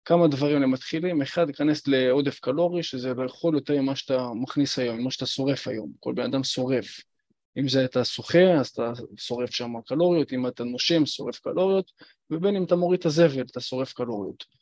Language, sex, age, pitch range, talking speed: Hebrew, male, 20-39, 130-175 Hz, 190 wpm